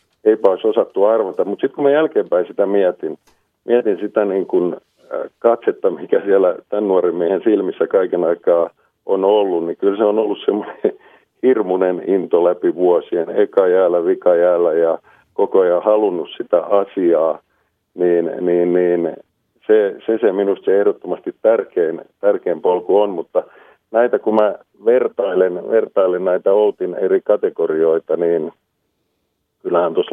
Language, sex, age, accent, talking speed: Finnish, male, 50-69, native, 145 wpm